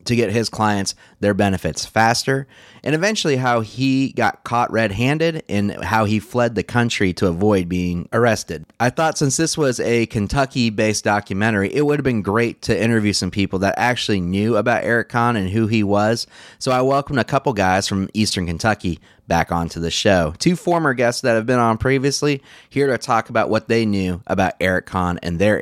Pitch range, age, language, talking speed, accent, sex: 100-125 Hz, 30-49, English, 195 wpm, American, male